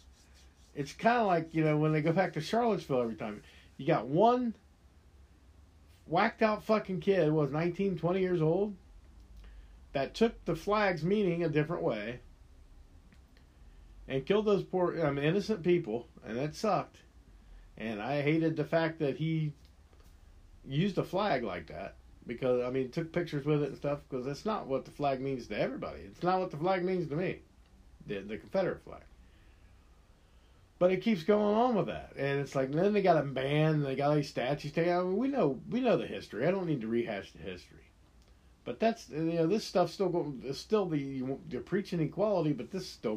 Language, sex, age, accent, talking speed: English, male, 50-69, American, 195 wpm